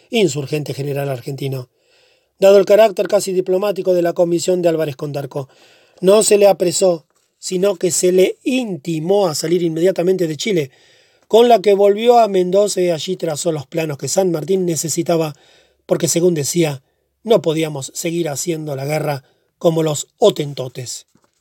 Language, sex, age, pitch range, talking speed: Spanish, male, 40-59, 155-190 Hz, 155 wpm